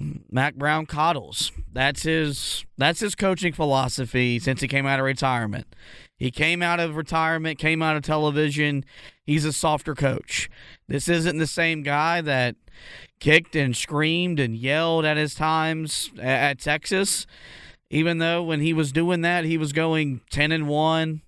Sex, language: male, English